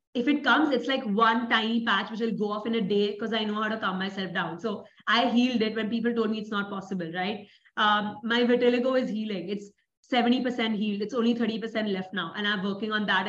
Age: 20-39